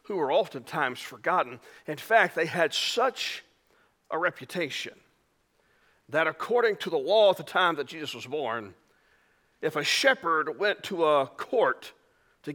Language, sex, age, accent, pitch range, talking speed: English, male, 40-59, American, 200-285 Hz, 145 wpm